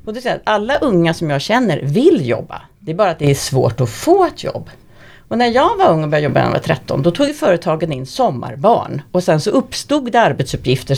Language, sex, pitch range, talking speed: Swedish, female, 150-240 Hz, 230 wpm